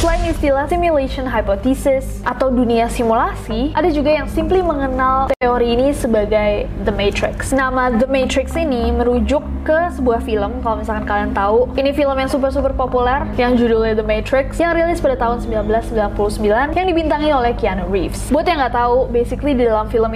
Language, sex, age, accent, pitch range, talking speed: Indonesian, female, 10-29, native, 225-285 Hz, 165 wpm